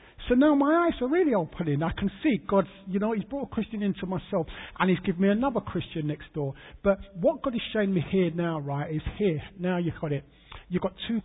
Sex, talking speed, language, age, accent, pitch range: male, 240 wpm, English, 50-69, British, 150-190 Hz